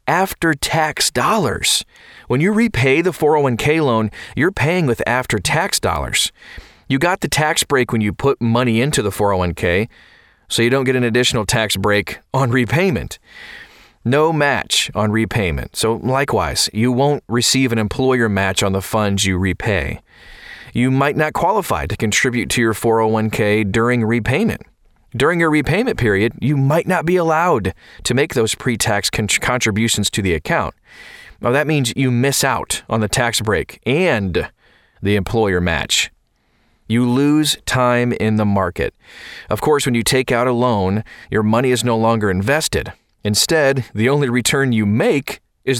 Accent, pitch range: American, 105-135 Hz